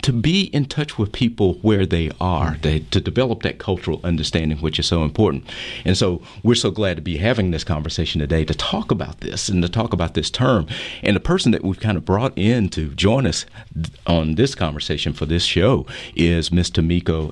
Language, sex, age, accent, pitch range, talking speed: English, male, 40-59, American, 85-105 Hz, 210 wpm